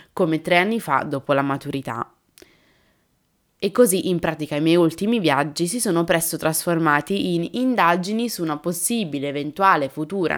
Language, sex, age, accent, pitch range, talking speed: Italian, female, 20-39, native, 150-185 Hz, 150 wpm